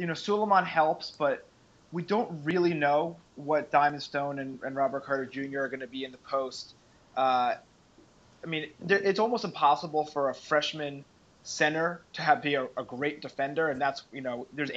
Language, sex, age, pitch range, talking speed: English, male, 20-39, 135-150 Hz, 190 wpm